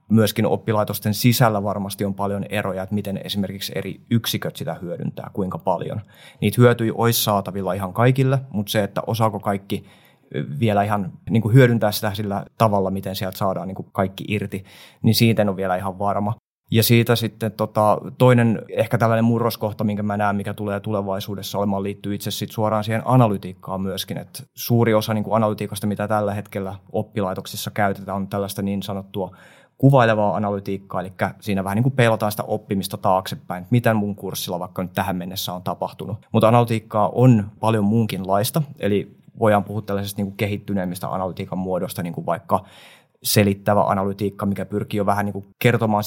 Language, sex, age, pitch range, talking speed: Finnish, male, 30-49, 100-110 Hz, 170 wpm